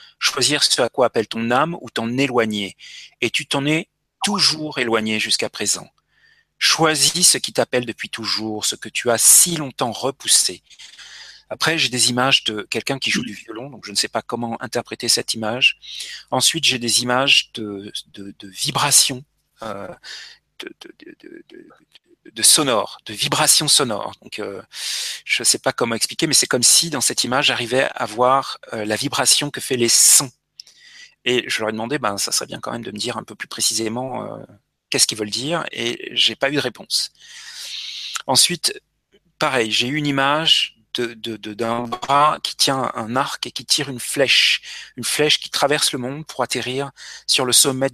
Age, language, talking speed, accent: 40-59, French, 195 wpm, French